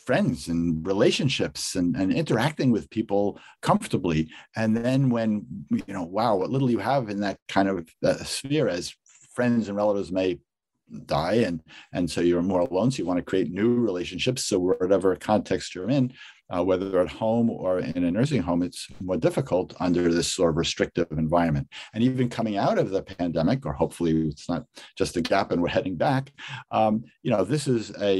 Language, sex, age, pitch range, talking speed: English, male, 50-69, 85-115 Hz, 195 wpm